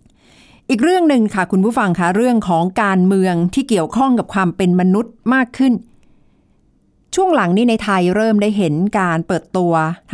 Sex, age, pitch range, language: female, 60-79, 165-220 Hz, Thai